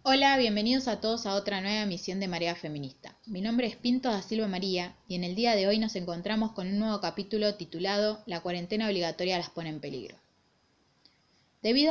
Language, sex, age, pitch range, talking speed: Spanish, female, 20-39, 170-215 Hz, 195 wpm